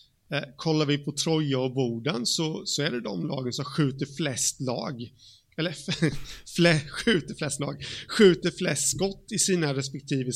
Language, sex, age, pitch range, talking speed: Swedish, male, 30-49, 130-160 Hz, 160 wpm